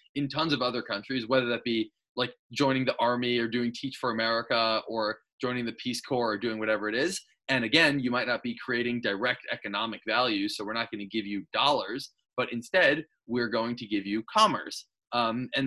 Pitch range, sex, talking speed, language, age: 110-135 Hz, male, 210 wpm, English, 20-39